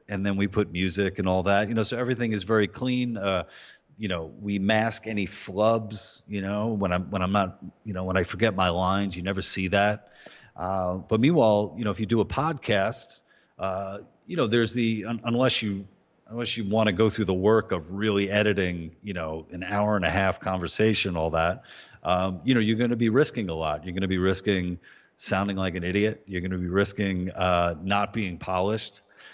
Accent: American